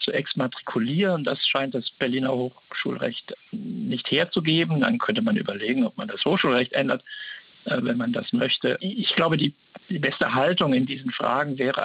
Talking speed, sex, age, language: 160 wpm, male, 60-79, German